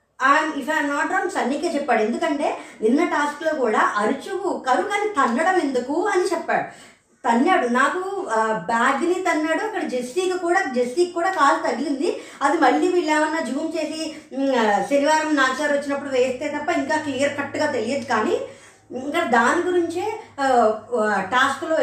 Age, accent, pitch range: 20-39, native, 250-330 Hz